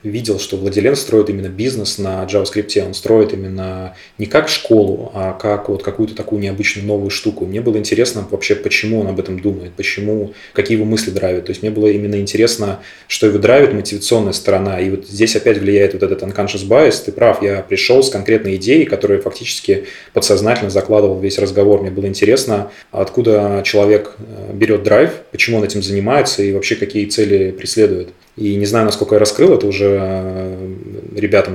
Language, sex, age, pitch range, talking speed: Russian, male, 20-39, 95-105 Hz, 180 wpm